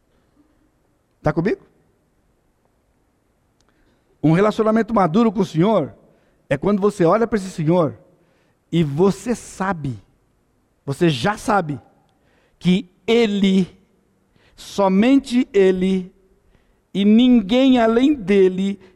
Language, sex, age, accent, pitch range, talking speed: Portuguese, male, 60-79, Brazilian, 180-240 Hz, 90 wpm